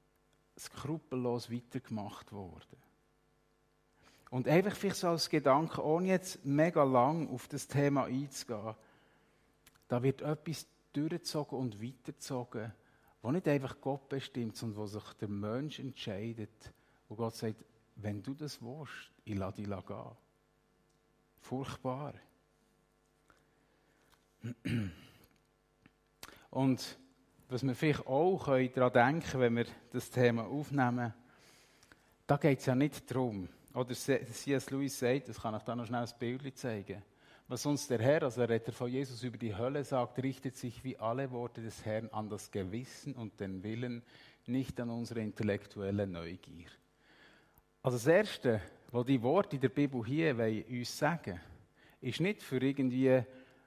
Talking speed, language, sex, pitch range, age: 140 wpm, German, male, 115-140 Hz, 50-69